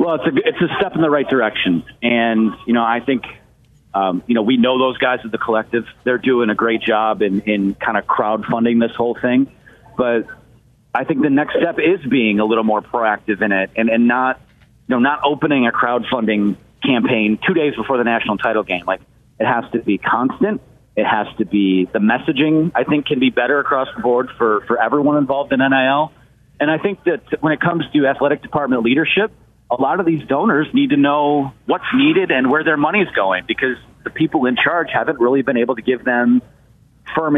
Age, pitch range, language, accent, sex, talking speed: 40-59, 115-145 Hz, English, American, male, 215 wpm